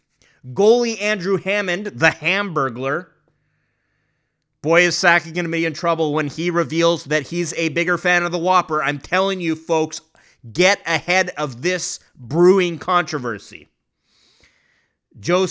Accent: American